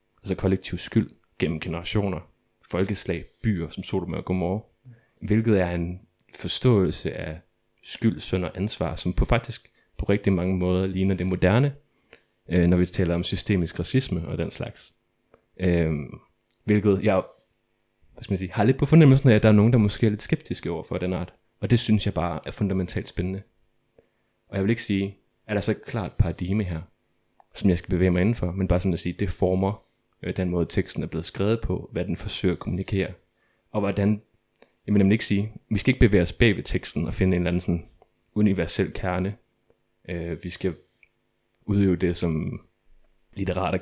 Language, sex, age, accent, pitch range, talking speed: Danish, male, 30-49, native, 90-105 Hz, 185 wpm